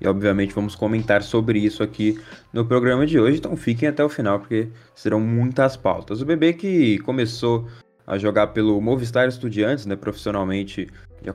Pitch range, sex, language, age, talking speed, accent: 105-125 Hz, male, Portuguese, 20-39, 170 wpm, Brazilian